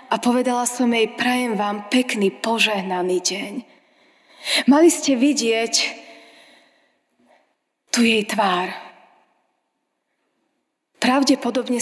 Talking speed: 80 wpm